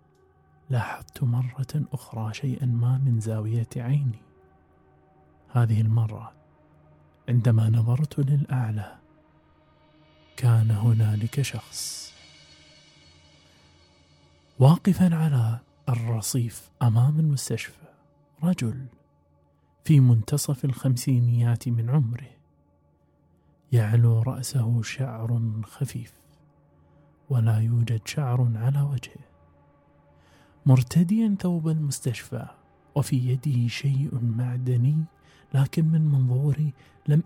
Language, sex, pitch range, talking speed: Arabic, male, 105-130 Hz, 75 wpm